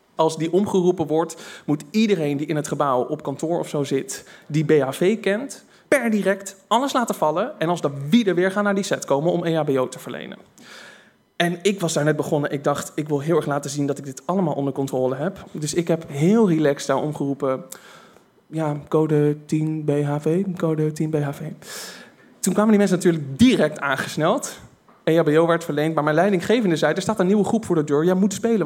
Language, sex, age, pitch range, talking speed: Dutch, male, 20-39, 140-185 Hz, 205 wpm